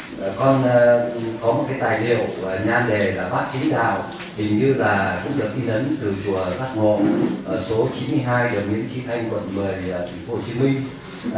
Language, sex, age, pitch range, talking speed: Vietnamese, male, 30-49, 105-140 Hz, 195 wpm